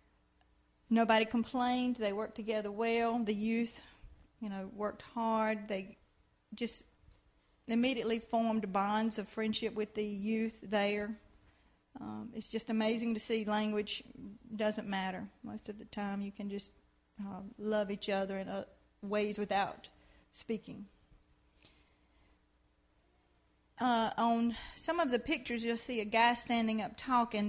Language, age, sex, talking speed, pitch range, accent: English, 40-59, female, 130 wpm, 200-230 Hz, American